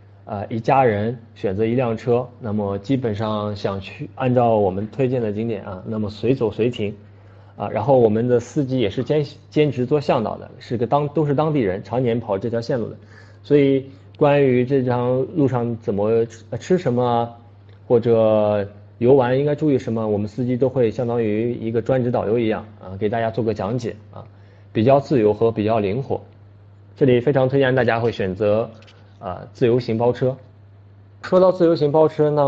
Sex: male